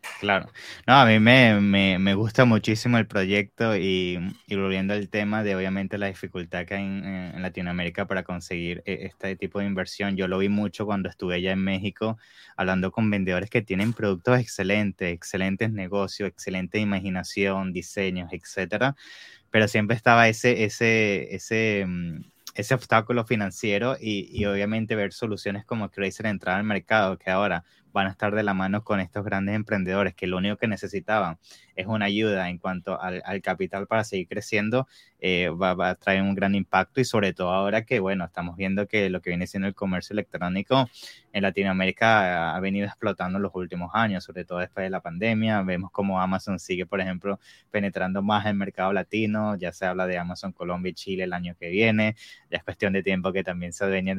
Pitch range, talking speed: 95-105 Hz, 190 wpm